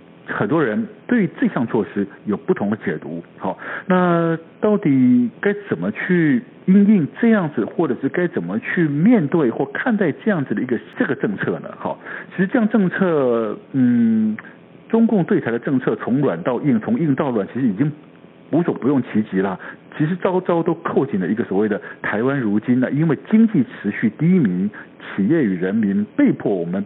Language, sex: Chinese, male